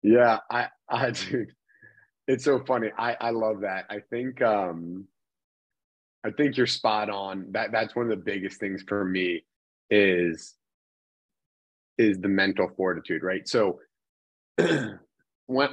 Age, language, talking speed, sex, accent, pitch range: 30-49, English, 135 wpm, male, American, 90-125 Hz